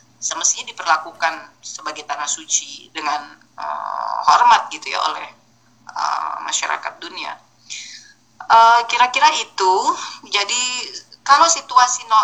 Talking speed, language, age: 105 wpm, Indonesian, 20-39